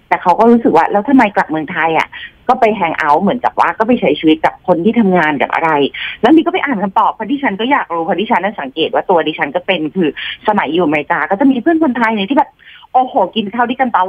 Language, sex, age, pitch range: Thai, female, 30-49, 175-255 Hz